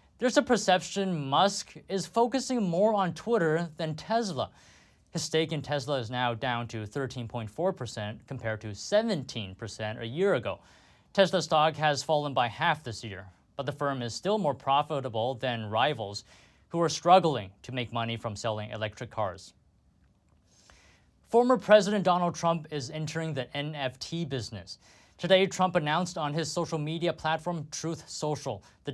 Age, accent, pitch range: 20-39, American, 120-175 Hz